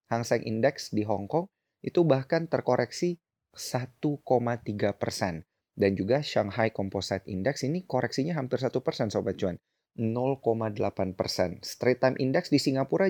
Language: Indonesian